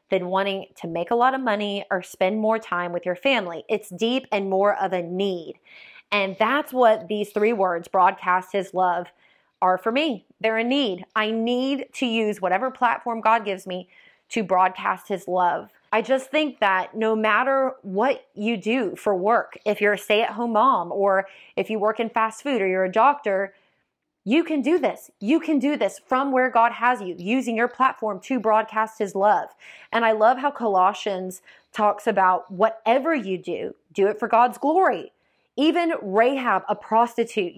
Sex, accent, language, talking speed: female, American, English, 185 wpm